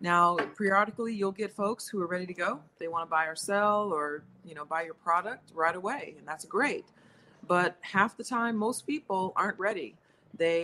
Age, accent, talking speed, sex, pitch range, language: 30-49, American, 205 wpm, female, 165-210 Hz, English